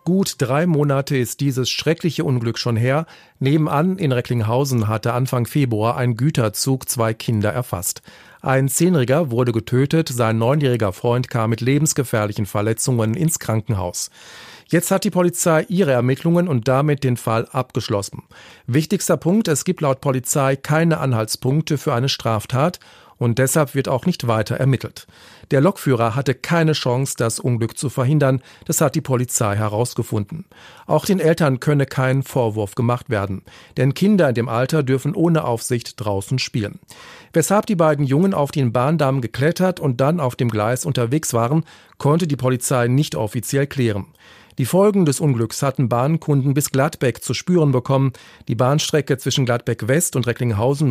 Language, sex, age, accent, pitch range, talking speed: German, male, 40-59, German, 120-155 Hz, 155 wpm